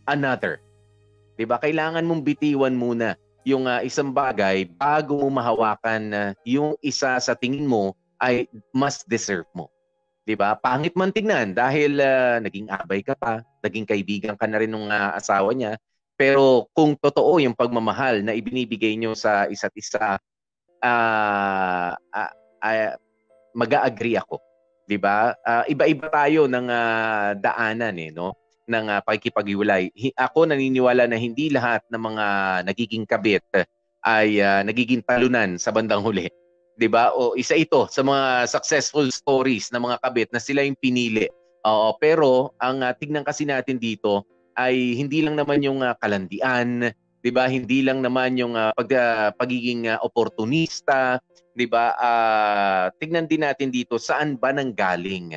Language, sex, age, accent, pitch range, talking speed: Filipino, male, 20-39, native, 105-135 Hz, 155 wpm